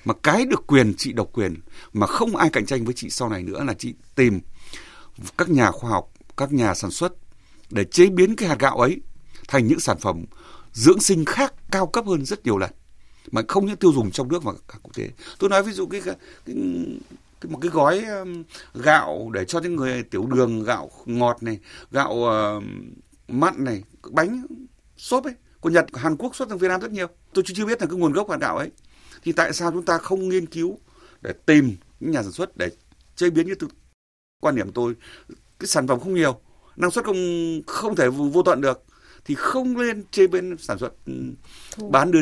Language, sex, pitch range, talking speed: Vietnamese, male, 120-195 Hz, 215 wpm